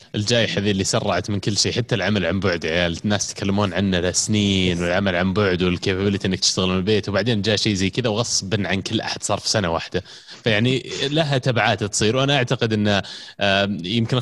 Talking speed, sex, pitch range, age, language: 200 wpm, male, 100-130 Hz, 20-39, Arabic